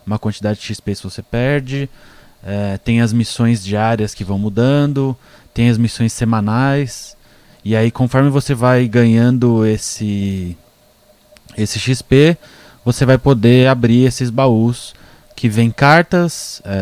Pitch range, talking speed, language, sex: 105-130 Hz, 135 wpm, Portuguese, male